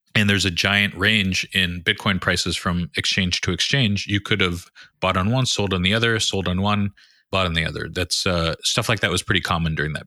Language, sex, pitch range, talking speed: English, male, 95-115 Hz, 230 wpm